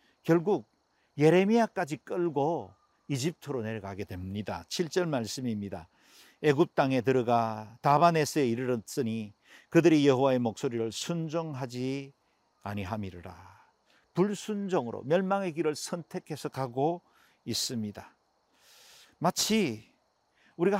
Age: 50-69